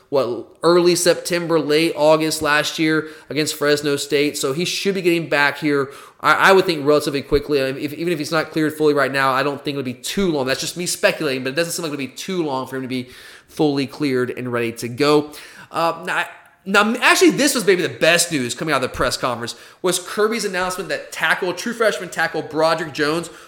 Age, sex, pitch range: 20-39, male, 140-180 Hz